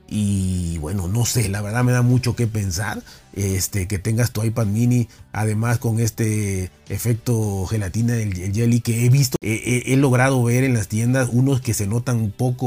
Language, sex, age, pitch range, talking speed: Spanish, male, 30-49, 105-125 Hz, 200 wpm